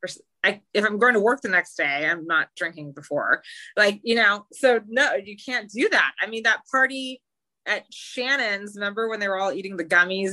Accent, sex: American, female